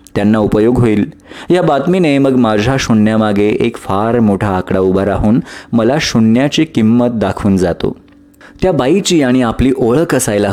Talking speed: 140 wpm